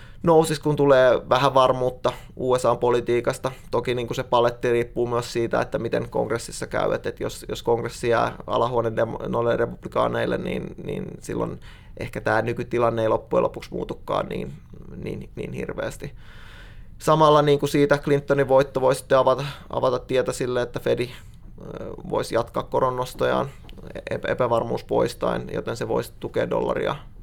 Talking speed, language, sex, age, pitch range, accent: 135 wpm, Finnish, male, 20-39, 120-140 Hz, native